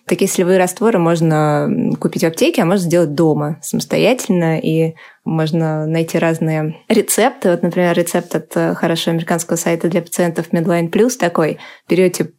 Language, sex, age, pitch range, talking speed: Russian, female, 20-39, 165-195 Hz, 145 wpm